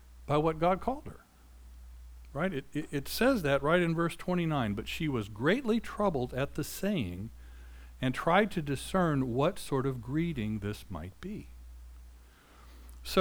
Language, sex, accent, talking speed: English, male, American, 160 wpm